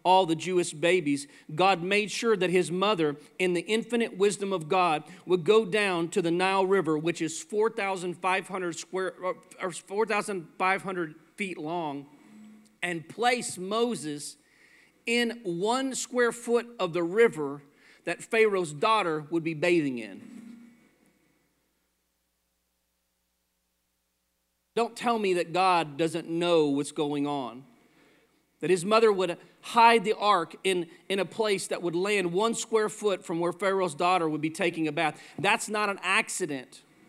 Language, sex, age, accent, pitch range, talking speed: English, male, 40-59, American, 160-200 Hz, 140 wpm